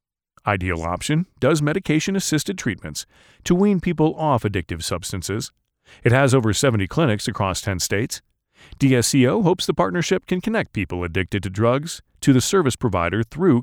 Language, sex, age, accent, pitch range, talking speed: English, male, 40-59, American, 100-150 Hz, 150 wpm